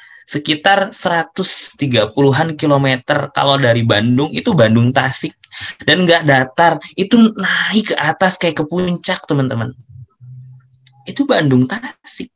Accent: native